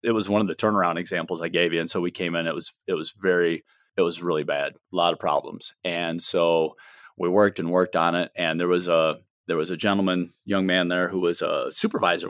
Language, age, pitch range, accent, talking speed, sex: English, 30-49, 95-110 Hz, American, 250 wpm, male